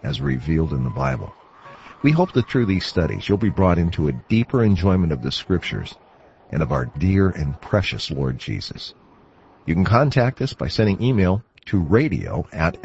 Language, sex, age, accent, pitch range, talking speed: English, male, 50-69, American, 90-125 Hz, 180 wpm